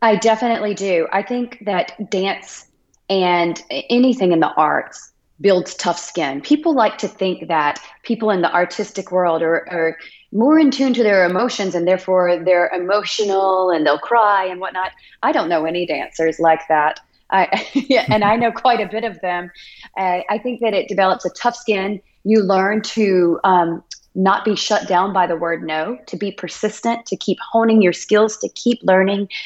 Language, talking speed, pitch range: English, 180 wpm, 170-215 Hz